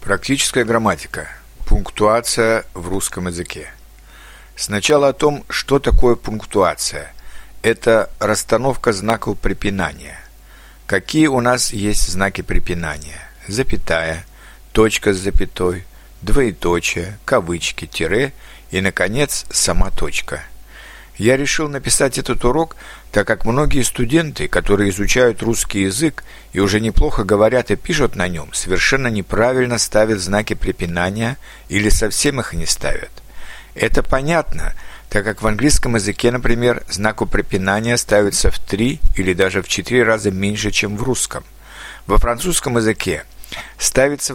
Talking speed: 120 wpm